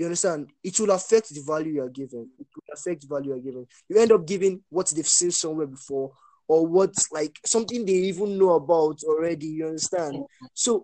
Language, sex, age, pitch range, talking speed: English, male, 10-29, 145-195 Hz, 215 wpm